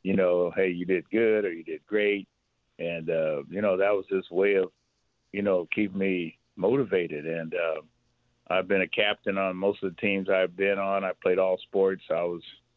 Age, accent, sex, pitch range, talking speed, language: 50-69, American, male, 95-110 Hz, 205 wpm, English